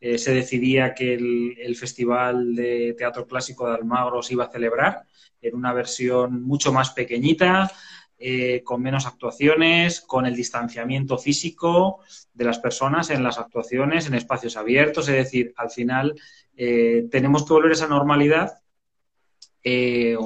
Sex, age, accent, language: male, 20-39, Spanish, Spanish